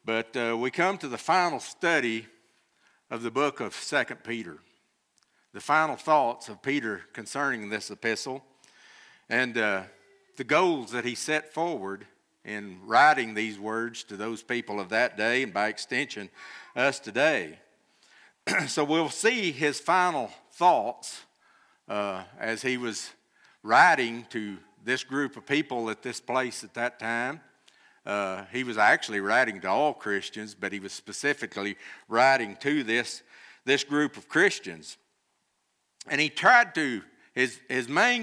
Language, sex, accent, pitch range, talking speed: English, male, American, 115-165 Hz, 145 wpm